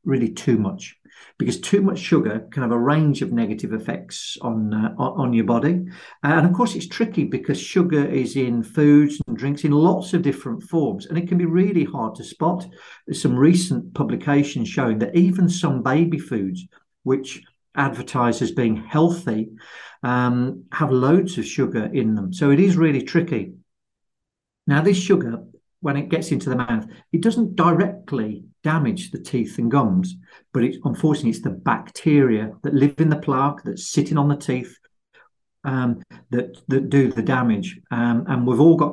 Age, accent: 50-69, British